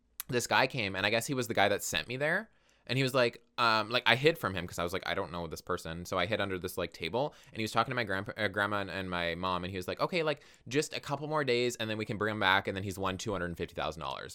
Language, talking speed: English, 320 wpm